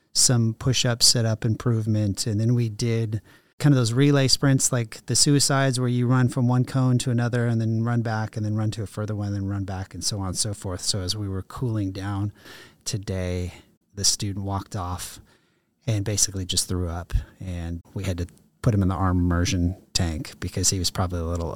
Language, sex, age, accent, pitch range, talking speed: English, male, 30-49, American, 95-120 Hz, 215 wpm